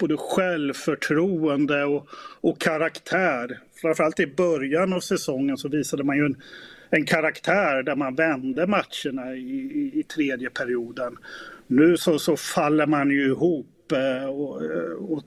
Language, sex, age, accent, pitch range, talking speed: Swedish, male, 30-49, native, 135-170 Hz, 140 wpm